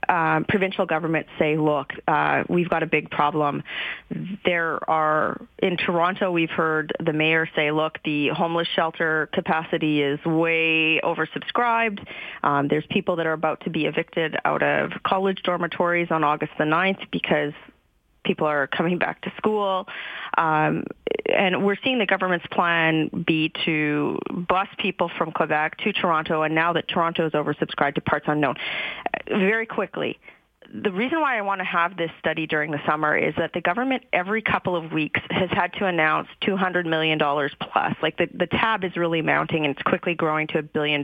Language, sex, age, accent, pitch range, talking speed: English, female, 30-49, American, 155-185 Hz, 175 wpm